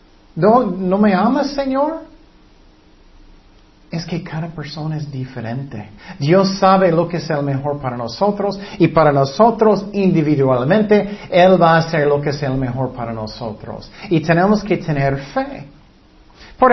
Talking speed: 145 wpm